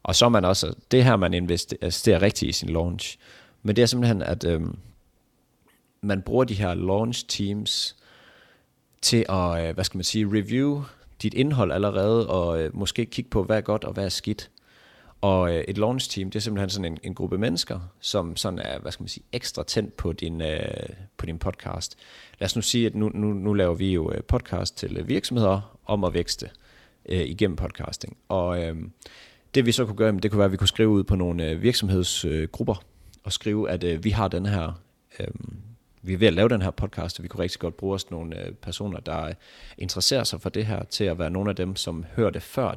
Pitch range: 90-110 Hz